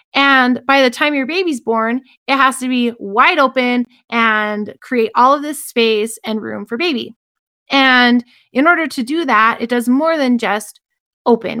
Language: English